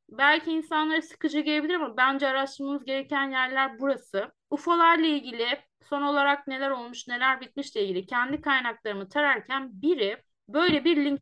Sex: female